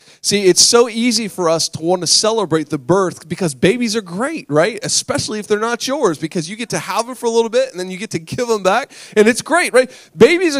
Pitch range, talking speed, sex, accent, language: 175-235 Hz, 255 wpm, male, American, English